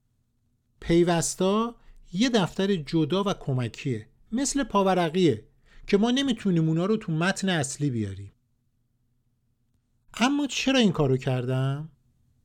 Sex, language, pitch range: male, Persian, 125-200 Hz